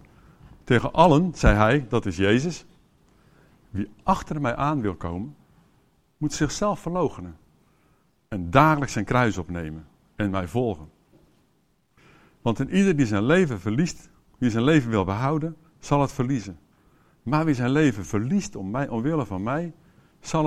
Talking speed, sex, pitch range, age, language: 145 wpm, male, 100-155 Hz, 50-69, English